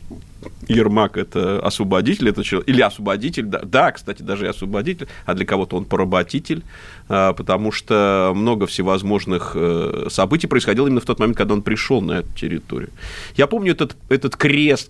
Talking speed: 155 wpm